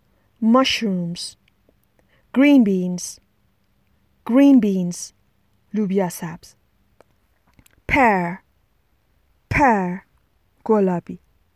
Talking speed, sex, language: 50 wpm, female, Persian